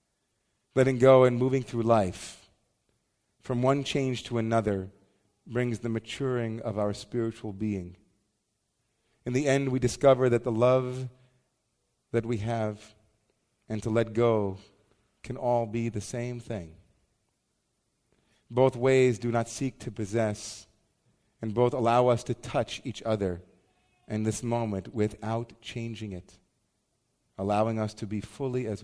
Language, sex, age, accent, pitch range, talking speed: English, male, 40-59, American, 105-130 Hz, 135 wpm